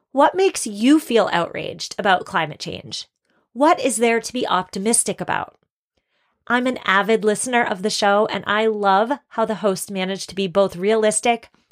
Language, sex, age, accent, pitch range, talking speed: English, female, 30-49, American, 195-240 Hz, 170 wpm